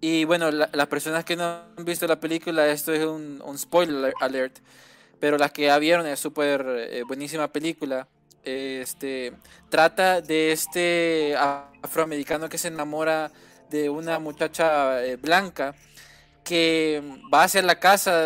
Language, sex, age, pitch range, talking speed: Spanish, male, 20-39, 150-175 Hz, 150 wpm